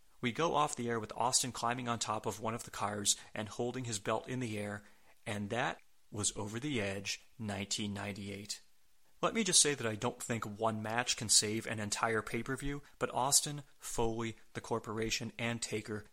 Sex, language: male, English